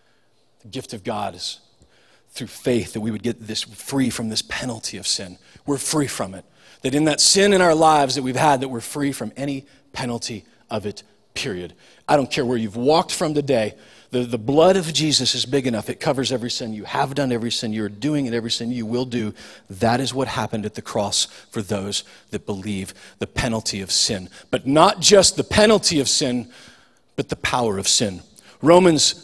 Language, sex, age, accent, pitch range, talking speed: English, male, 40-59, American, 120-160 Hz, 210 wpm